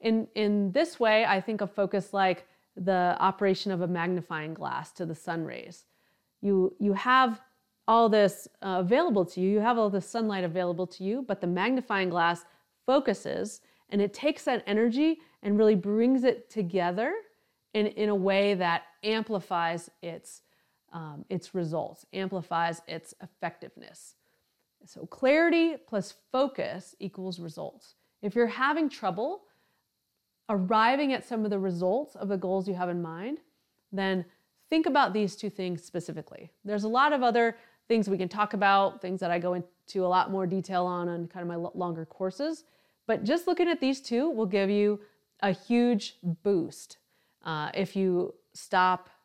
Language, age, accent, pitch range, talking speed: English, 30-49, American, 185-235 Hz, 165 wpm